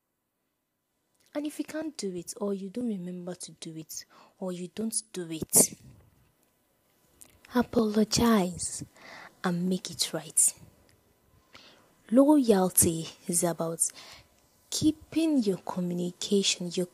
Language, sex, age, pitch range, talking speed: English, female, 20-39, 175-220 Hz, 105 wpm